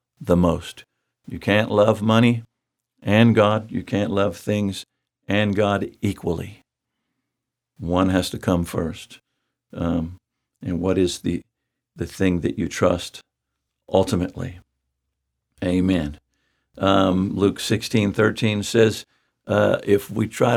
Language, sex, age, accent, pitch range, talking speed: English, male, 60-79, American, 90-110 Hz, 120 wpm